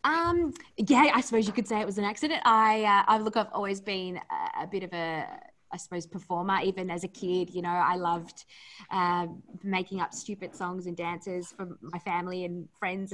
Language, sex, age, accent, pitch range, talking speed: English, female, 20-39, Australian, 175-225 Hz, 210 wpm